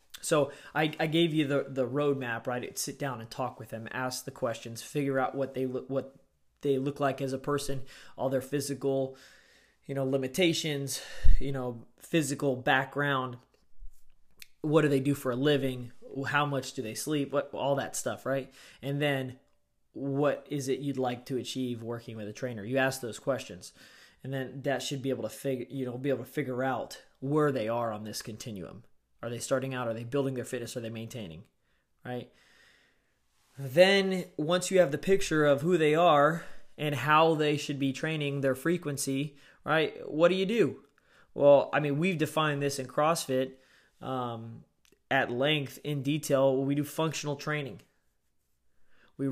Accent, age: American, 20-39